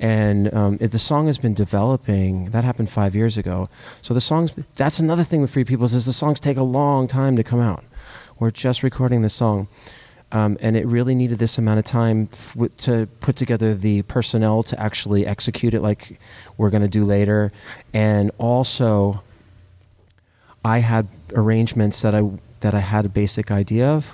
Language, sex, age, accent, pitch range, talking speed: English, male, 30-49, American, 100-125 Hz, 190 wpm